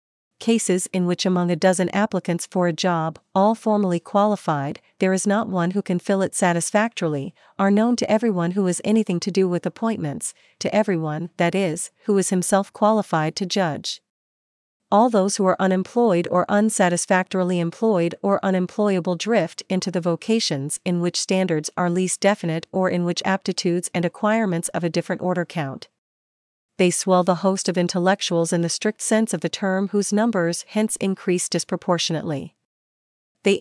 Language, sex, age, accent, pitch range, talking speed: English, female, 40-59, American, 170-200 Hz, 165 wpm